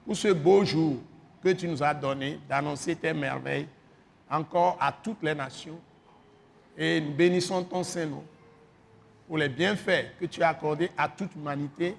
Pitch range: 155-190 Hz